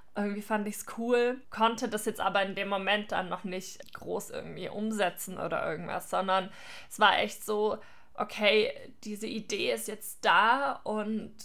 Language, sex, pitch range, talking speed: German, female, 195-225 Hz, 170 wpm